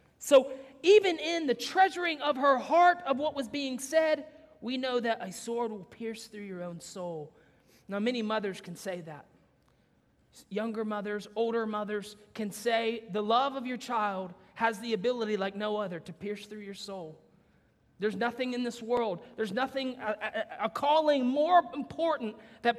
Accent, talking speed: American, 170 wpm